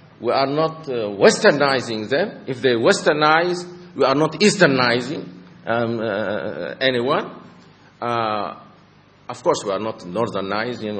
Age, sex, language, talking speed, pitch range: 50-69, male, English, 125 wpm, 110-155 Hz